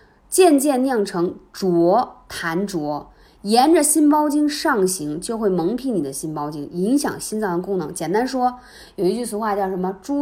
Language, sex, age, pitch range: Chinese, female, 20-39, 180-275 Hz